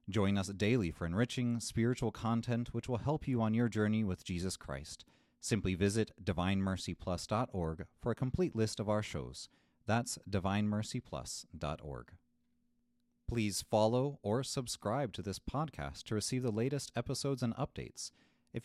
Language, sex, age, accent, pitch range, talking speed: English, male, 30-49, American, 90-120 Hz, 140 wpm